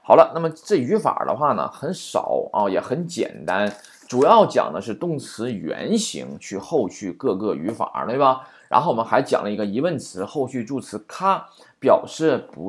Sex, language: male, Chinese